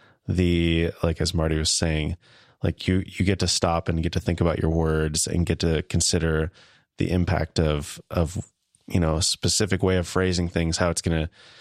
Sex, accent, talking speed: male, American, 200 wpm